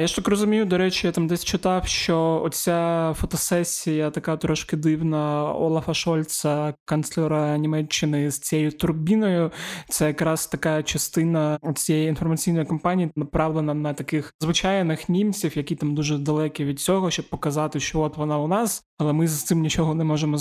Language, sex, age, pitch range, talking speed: Ukrainian, male, 20-39, 145-165 Hz, 160 wpm